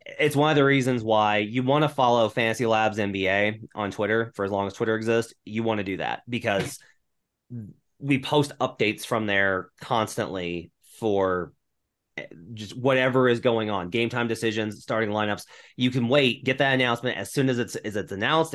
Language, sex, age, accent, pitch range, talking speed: English, male, 30-49, American, 100-130 Hz, 180 wpm